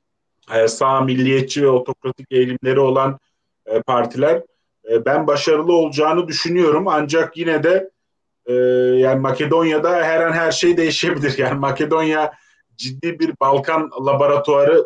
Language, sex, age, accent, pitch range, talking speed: Turkish, male, 40-59, native, 130-155 Hz, 125 wpm